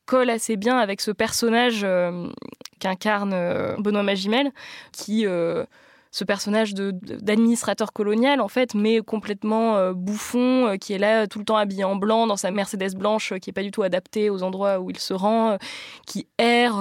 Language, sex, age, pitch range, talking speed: French, female, 20-39, 200-230 Hz, 190 wpm